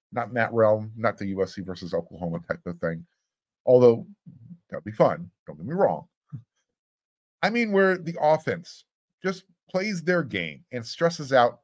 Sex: male